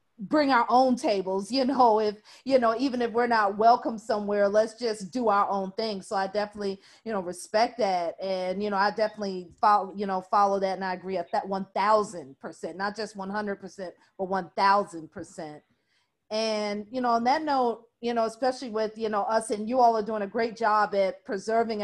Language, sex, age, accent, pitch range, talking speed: English, female, 40-59, American, 195-225 Hz, 215 wpm